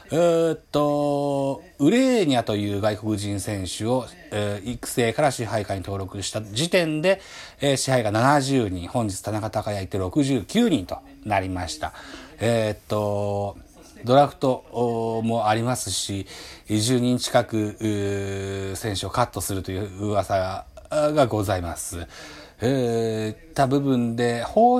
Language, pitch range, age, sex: Japanese, 95-155 Hz, 40-59, male